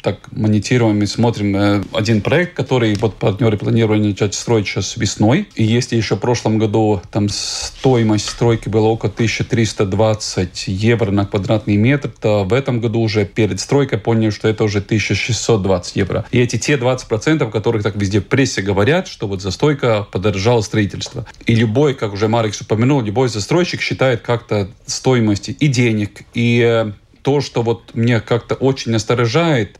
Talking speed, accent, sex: 160 wpm, native, male